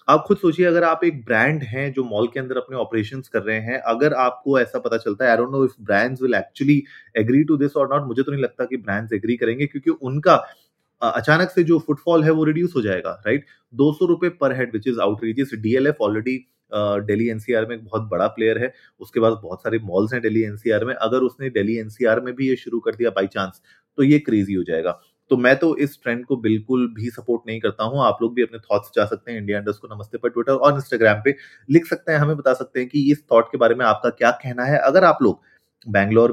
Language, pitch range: Hindi, 110-135 Hz